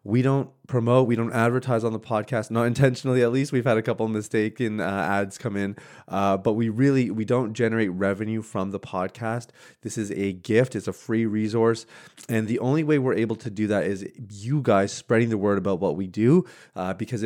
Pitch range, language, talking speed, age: 100-125 Hz, English, 220 wpm, 20-39